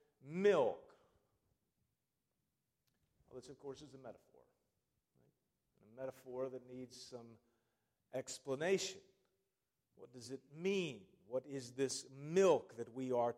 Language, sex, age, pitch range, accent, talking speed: English, male, 40-59, 140-195 Hz, American, 110 wpm